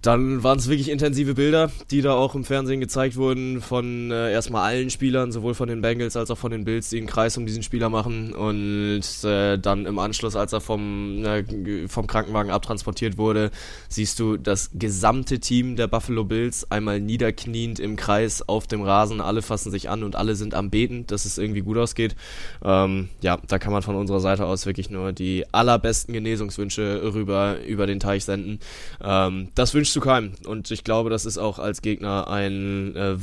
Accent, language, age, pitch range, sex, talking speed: German, German, 10-29, 100-115 Hz, male, 195 wpm